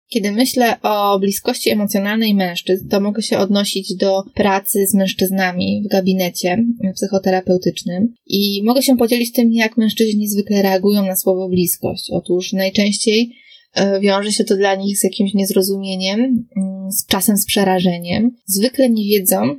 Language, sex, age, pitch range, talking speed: Polish, female, 20-39, 190-220 Hz, 140 wpm